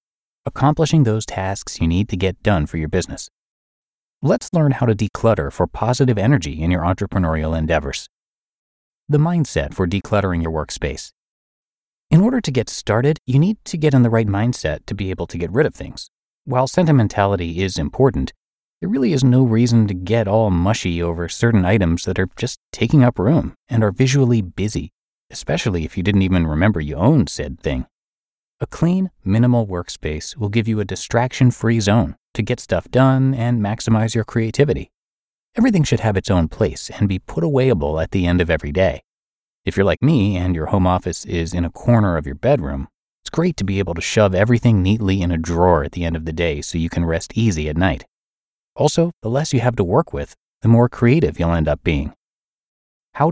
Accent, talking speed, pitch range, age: American, 200 wpm, 85-120 Hz, 30-49